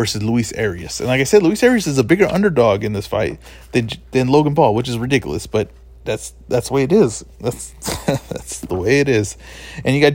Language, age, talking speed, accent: English, 20-39, 230 wpm, American